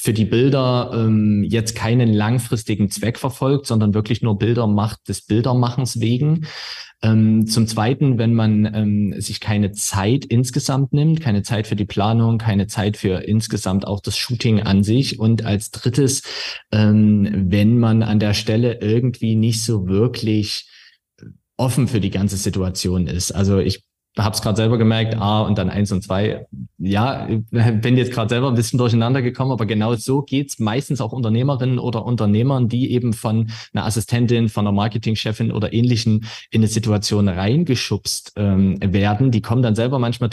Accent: German